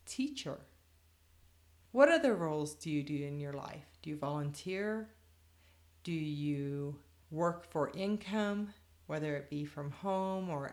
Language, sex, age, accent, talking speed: English, female, 30-49, American, 135 wpm